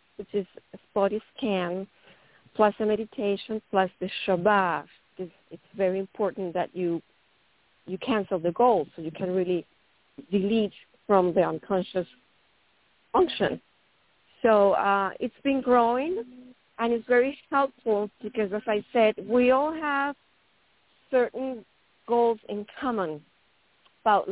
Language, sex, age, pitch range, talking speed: English, female, 40-59, 195-235 Hz, 125 wpm